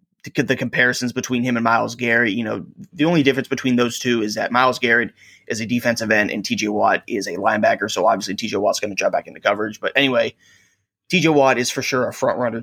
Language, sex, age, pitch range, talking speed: English, male, 20-39, 115-135 Hz, 235 wpm